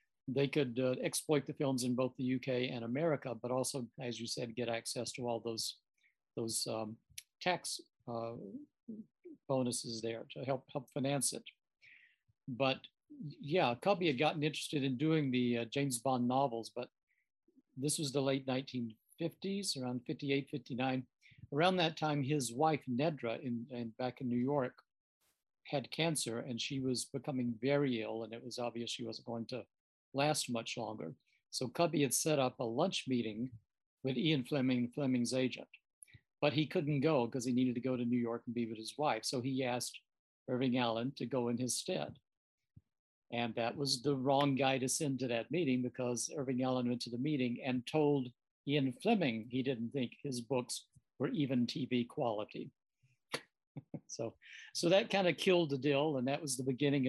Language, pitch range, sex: English, 120-145 Hz, male